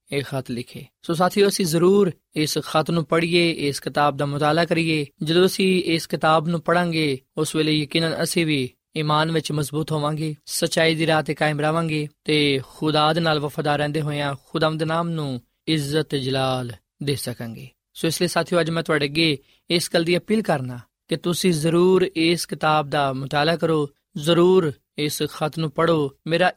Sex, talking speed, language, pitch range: male, 185 wpm, Punjabi, 140-170 Hz